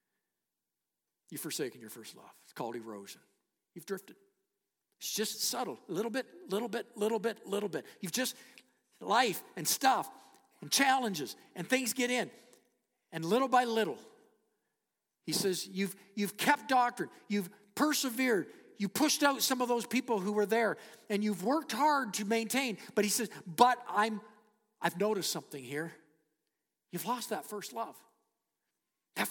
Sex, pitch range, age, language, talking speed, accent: male, 205-260 Hz, 50-69, English, 155 wpm, American